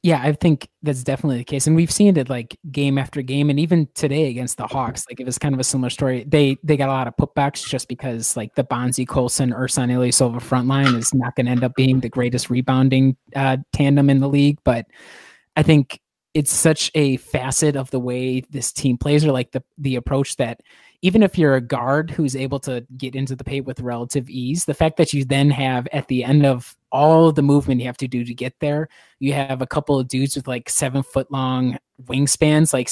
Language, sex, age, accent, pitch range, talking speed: English, male, 20-39, American, 130-150 Hz, 235 wpm